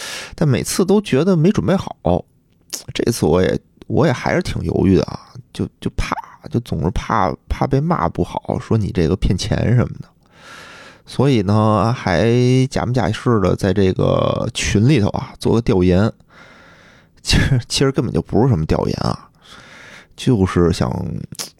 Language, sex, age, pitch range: Chinese, male, 20-39, 95-130 Hz